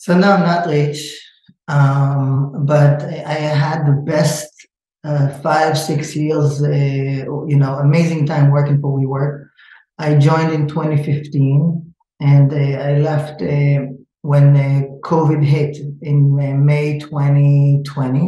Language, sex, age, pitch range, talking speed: English, male, 20-39, 145-180 Hz, 130 wpm